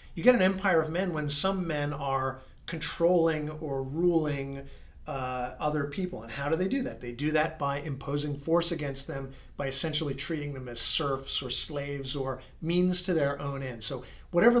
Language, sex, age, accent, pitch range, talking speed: English, male, 40-59, American, 130-165 Hz, 190 wpm